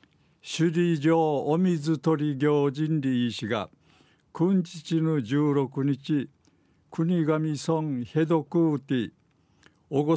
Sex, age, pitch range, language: male, 60-79, 135-160 Hz, Japanese